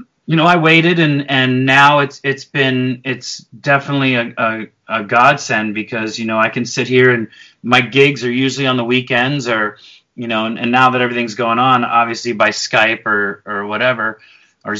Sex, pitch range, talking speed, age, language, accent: male, 120-135 Hz, 195 wpm, 30-49, English, American